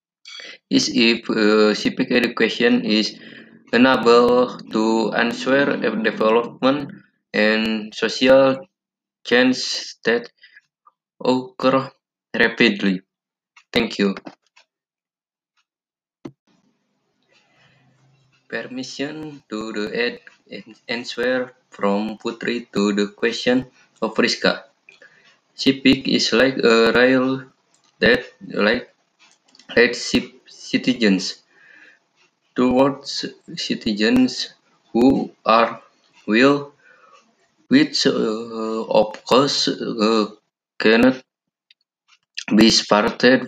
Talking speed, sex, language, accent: 75 wpm, male, Indonesian, native